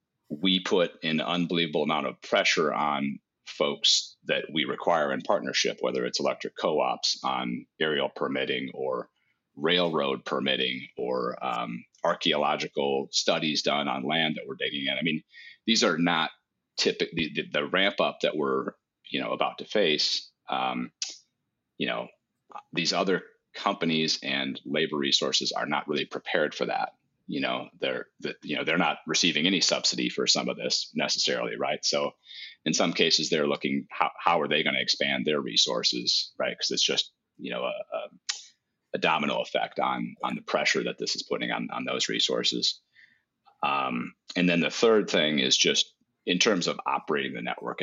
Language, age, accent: English, 40-59, American